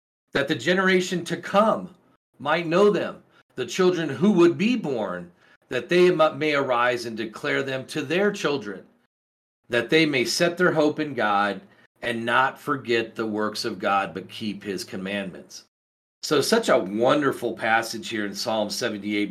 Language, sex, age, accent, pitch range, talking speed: English, male, 40-59, American, 110-150 Hz, 160 wpm